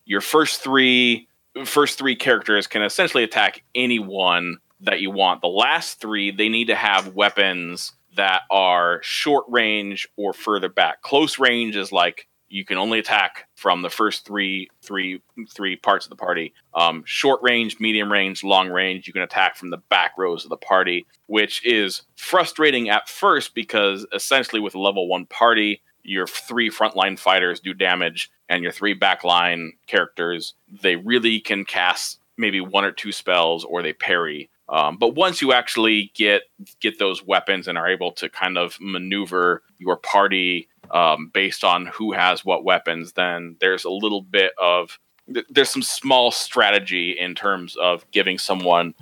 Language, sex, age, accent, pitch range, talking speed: English, male, 30-49, American, 90-110 Hz, 165 wpm